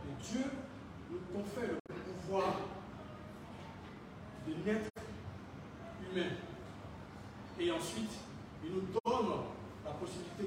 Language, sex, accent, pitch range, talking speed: French, male, French, 145-230 Hz, 85 wpm